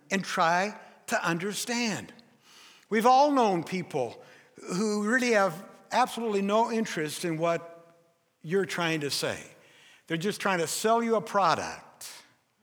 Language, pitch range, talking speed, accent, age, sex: English, 155-215 Hz, 135 wpm, American, 60-79, male